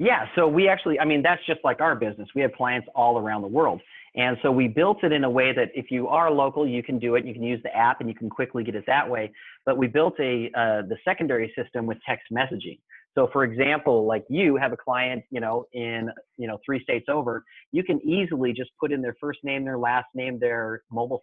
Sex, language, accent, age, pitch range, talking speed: male, English, American, 30-49, 120-155 Hz, 250 wpm